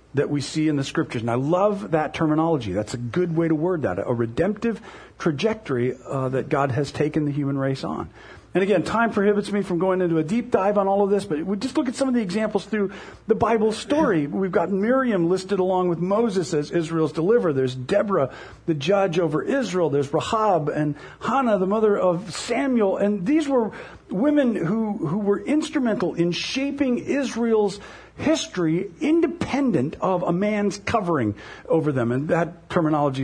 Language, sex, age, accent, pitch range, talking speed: English, male, 50-69, American, 155-215 Hz, 190 wpm